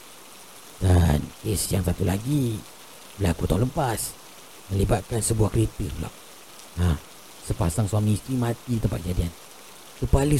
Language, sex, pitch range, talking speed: Malay, male, 90-150 Hz, 120 wpm